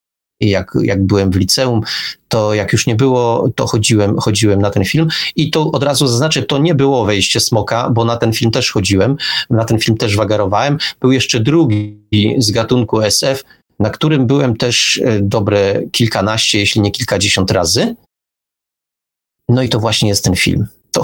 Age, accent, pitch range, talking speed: 30-49, native, 110-145 Hz, 175 wpm